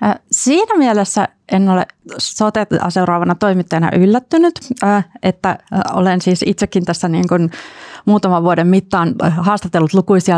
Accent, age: native, 30-49